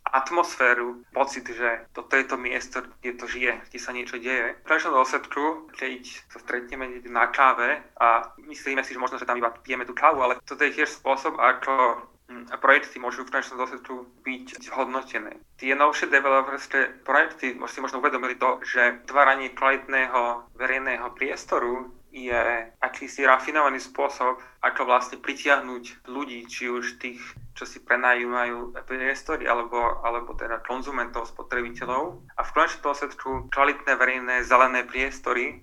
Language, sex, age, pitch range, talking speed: Czech, male, 30-49, 120-135 Hz, 150 wpm